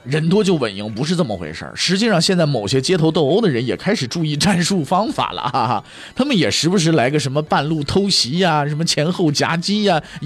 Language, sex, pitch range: Chinese, male, 140-185 Hz